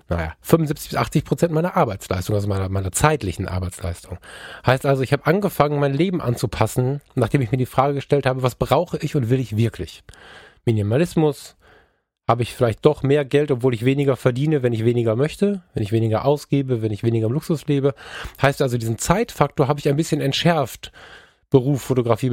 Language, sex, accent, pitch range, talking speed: German, male, German, 120-160 Hz, 190 wpm